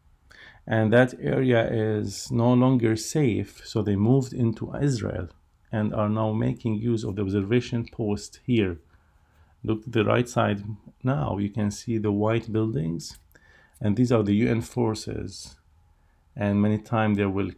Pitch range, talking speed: 95-115 Hz, 155 wpm